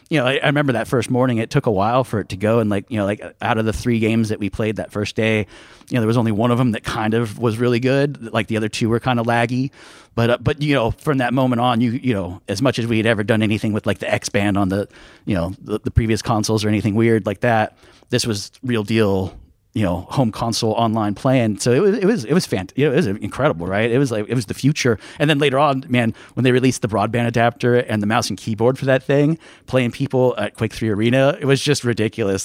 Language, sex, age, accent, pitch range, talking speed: English, male, 30-49, American, 110-130 Hz, 280 wpm